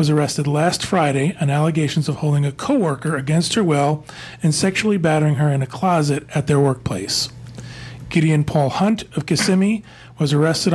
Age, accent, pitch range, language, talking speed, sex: 40-59, American, 140-170 Hz, English, 160 wpm, male